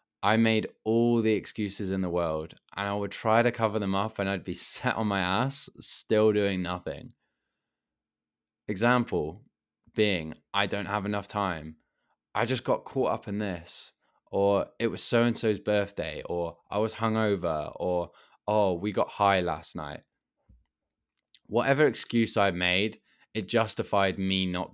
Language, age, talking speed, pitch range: English, 20-39, 155 wpm, 100-120 Hz